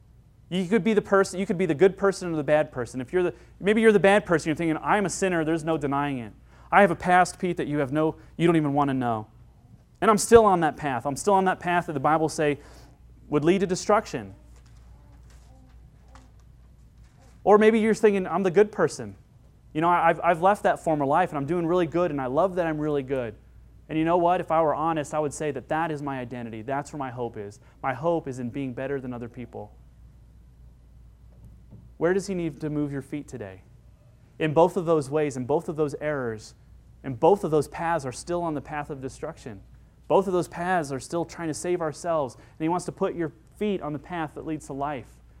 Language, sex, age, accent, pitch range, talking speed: English, male, 30-49, American, 125-170 Hz, 235 wpm